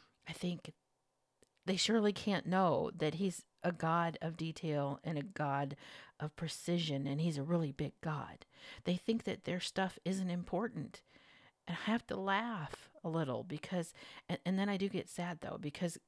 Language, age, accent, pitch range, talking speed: English, 50-69, American, 145-185 Hz, 175 wpm